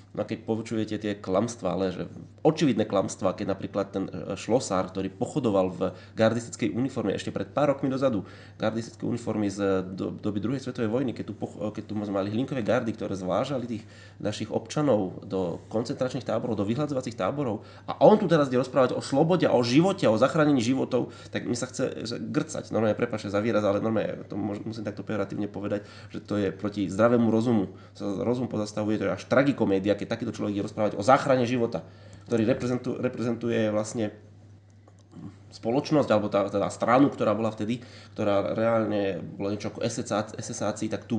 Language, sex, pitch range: Slovak, male, 100-110 Hz